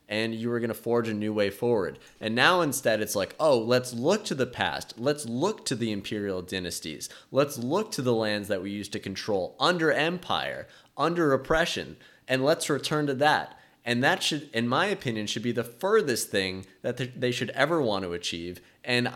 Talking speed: 205 wpm